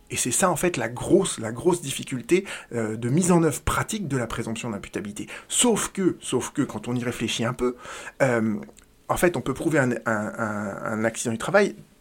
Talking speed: 210 wpm